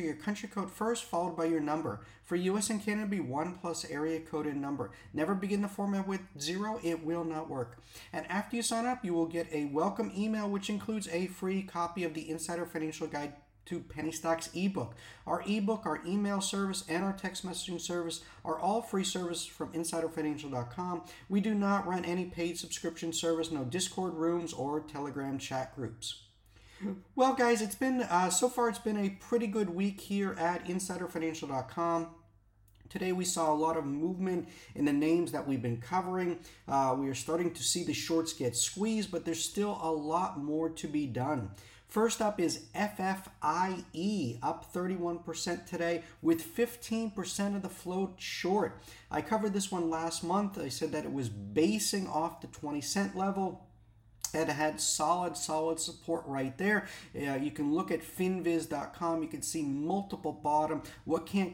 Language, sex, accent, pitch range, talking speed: English, male, American, 155-190 Hz, 180 wpm